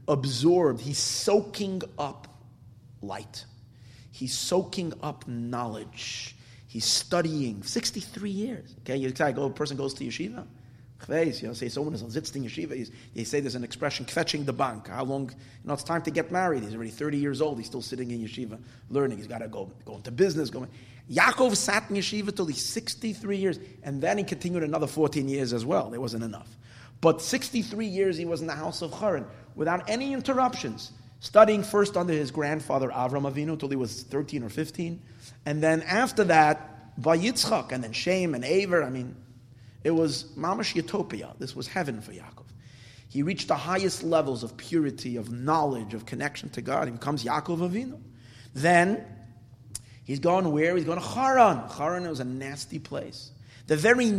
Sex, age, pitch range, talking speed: male, 30-49, 120-170 Hz, 185 wpm